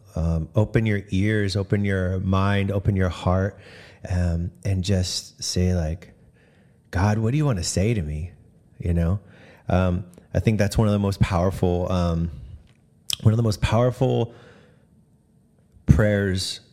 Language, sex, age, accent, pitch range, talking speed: English, male, 30-49, American, 90-105 Hz, 150 wpm